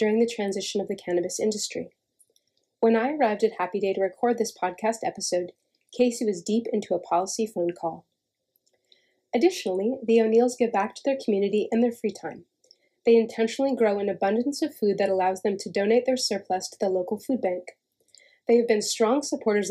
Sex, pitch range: female, 190-235 Hz